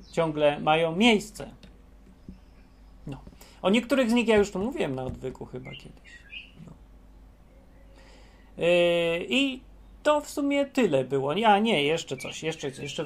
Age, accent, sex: 30-49, native, male